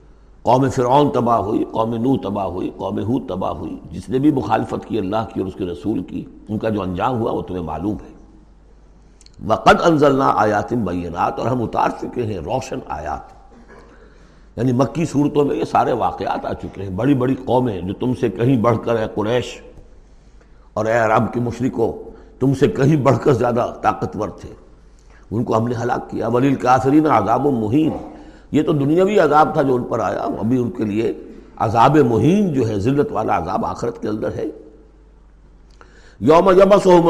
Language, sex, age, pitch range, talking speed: Urdu, male, 60-79, 110-155 Hz, 185 wpm